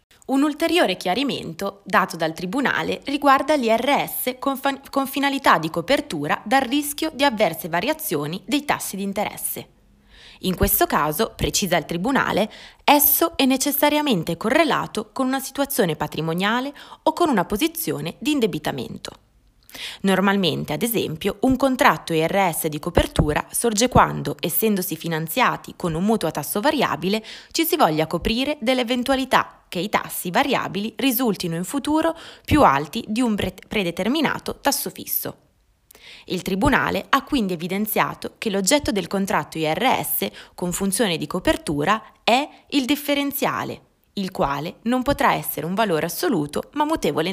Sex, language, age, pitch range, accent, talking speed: female, Italian, 20-39, 180-275 Hz, native, 135 wpm